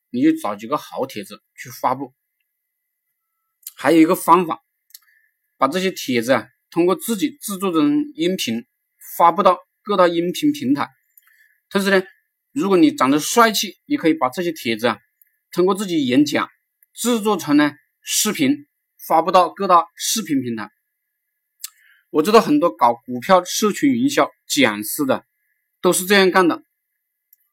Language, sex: Chinese, male